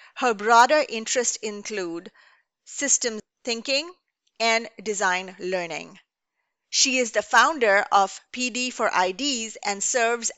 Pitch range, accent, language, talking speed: 200-255 Hz, Indian, English, 110 wpm